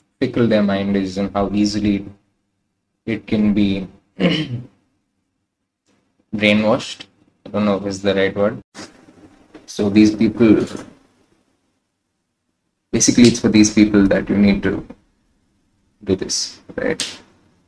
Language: English